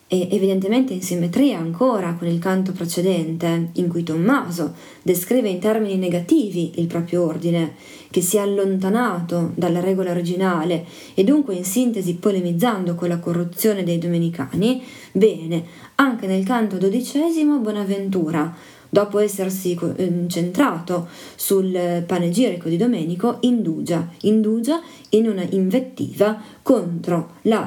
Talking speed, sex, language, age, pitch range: 120 wpm, female, Italian, 30-49, 170-215 Hz